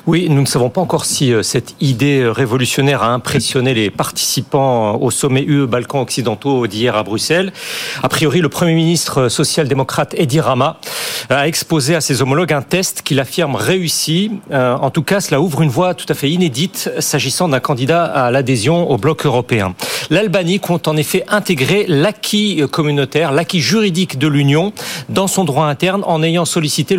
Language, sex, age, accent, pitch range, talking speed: French, male, 40-59, French, 140-180 Hz, 170 wpm